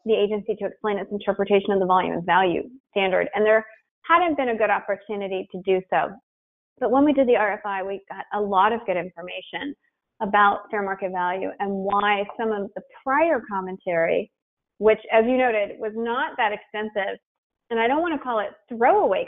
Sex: female